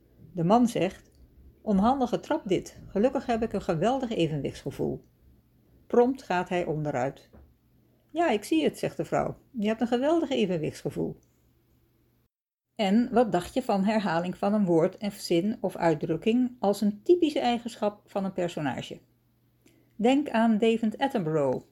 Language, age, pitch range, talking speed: Dutch, 60-79, 185-235 Hz, 145 wpm